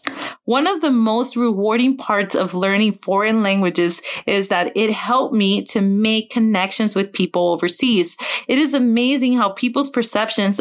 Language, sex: English, female